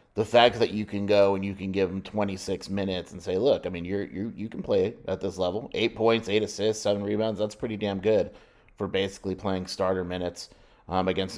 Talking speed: 225 wpm